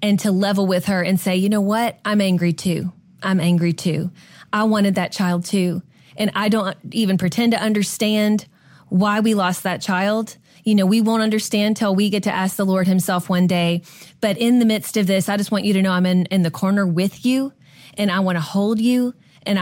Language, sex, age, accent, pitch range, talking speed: English, female, 30-49, American, 180-215 Hz, 225 wpm